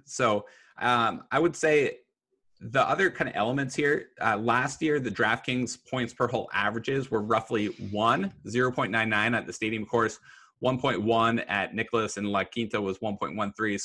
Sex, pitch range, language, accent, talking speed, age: male, 100-125 Hz, English, American, 155 wpm, 20-39